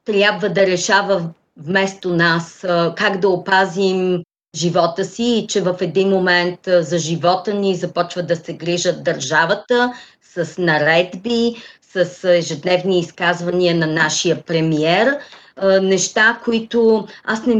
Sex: female